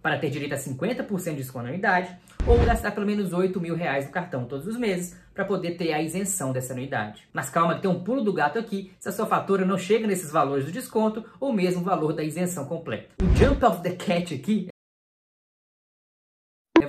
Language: Portuguese